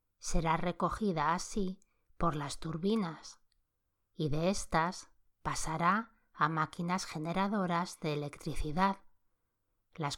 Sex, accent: female, Spanish